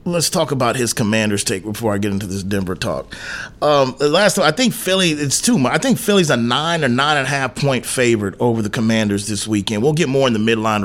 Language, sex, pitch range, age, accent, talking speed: English, male, 110-145 Hz, 30-49, American, 250 wpm